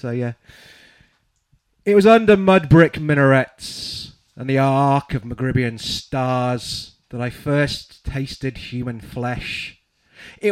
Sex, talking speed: male, 115 wpm